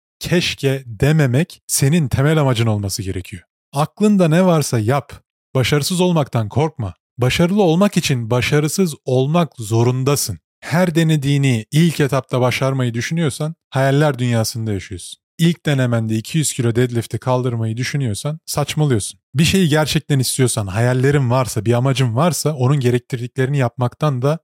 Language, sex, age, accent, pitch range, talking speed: Turkish, male, 30-49, native, 120-155 Hz, 125 wpm